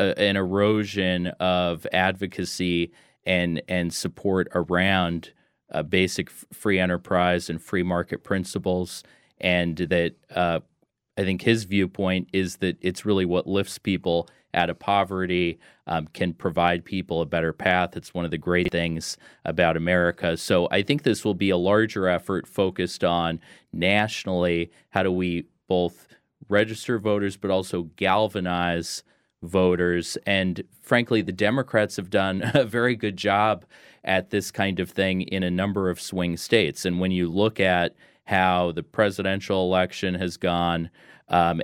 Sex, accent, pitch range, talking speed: male, American, 90-100 Hz, 150 wpm